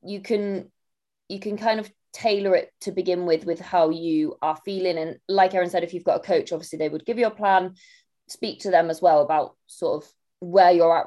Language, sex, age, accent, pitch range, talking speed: English, female, 20-39, British, 160-195 Hz, 235 wpm